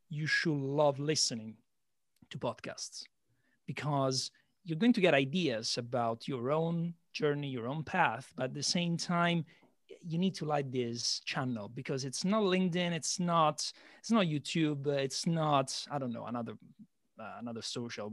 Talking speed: 160 wpm